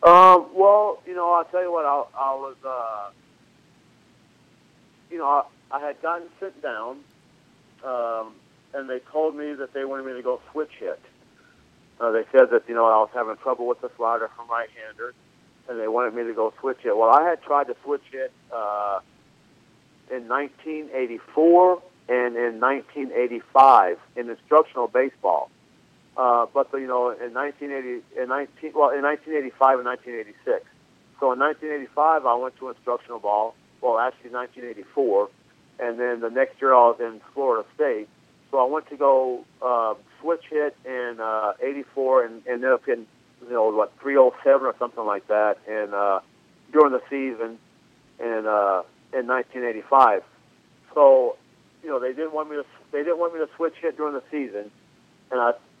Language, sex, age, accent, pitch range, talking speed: English, male, 50-69, American, 120-155 Hz, 185 wpm